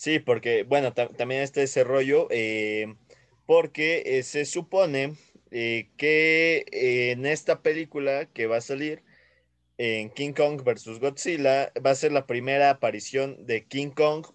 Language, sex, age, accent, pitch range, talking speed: Spanish, male, 20-39, Mexican, 115-145 Hz, 155 wpm